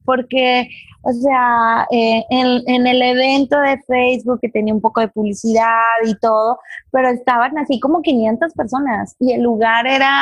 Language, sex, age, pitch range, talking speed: English, female, 20-39, 220-265 Hz, 165 wpm